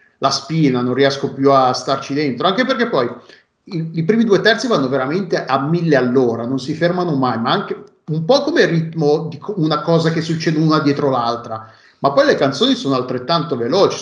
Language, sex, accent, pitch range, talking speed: Italian, male, native, 130-165 Hz, 200 wpm